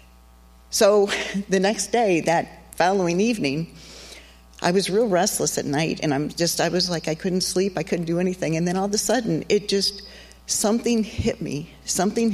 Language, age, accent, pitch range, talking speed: English, 50-69, American, 165-210 Hz, 185 wpm